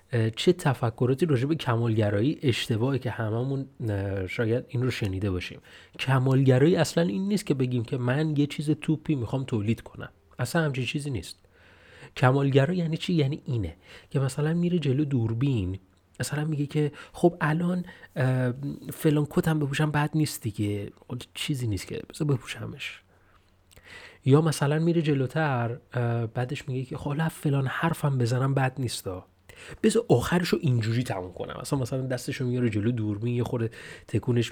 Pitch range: 110-150 Hz